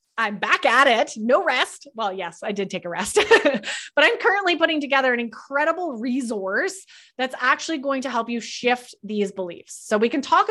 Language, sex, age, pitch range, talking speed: English, female, 20-39, 215-270 Hz, 195 wpm